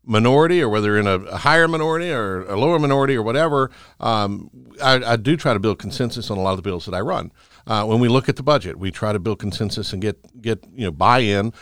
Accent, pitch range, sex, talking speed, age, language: American, 100-130 Hz, male, 260 wpm, 60-79, English